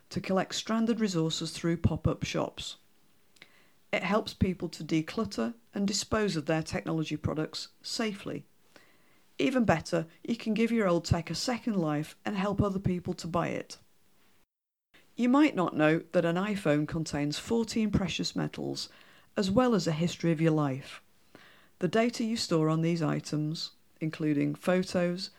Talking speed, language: 155 wpm, English